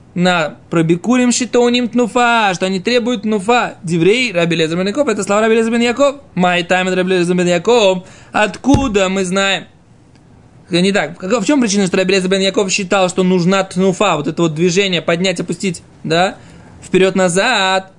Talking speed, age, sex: 135 wpm, 20-39, male